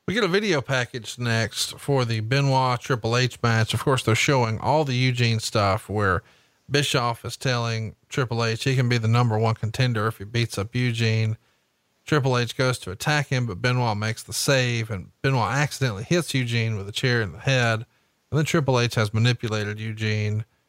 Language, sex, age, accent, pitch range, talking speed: English, male, 40-59, American, 110-135 Hz, 195 wpm